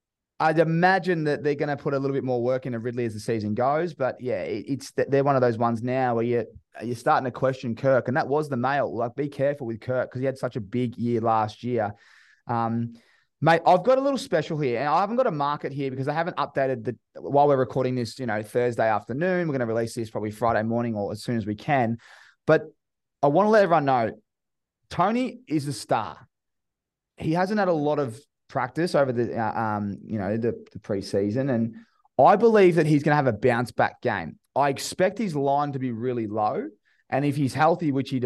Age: 20-39